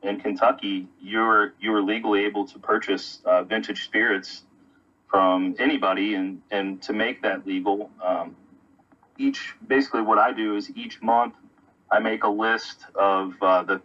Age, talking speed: 30-49, 150 wpm